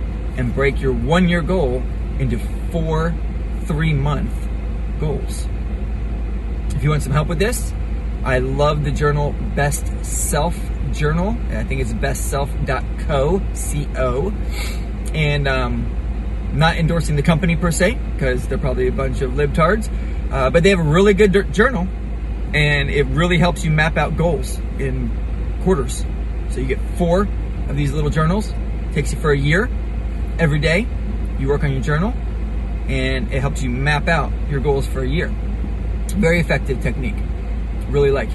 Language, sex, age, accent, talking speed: English, male, 30-49, American, 155 wpm